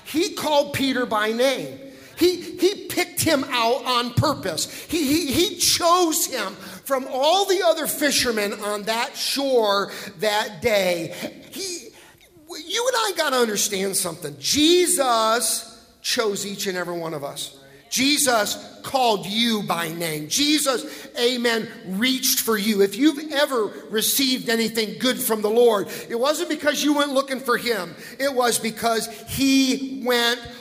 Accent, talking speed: American, 145 wpm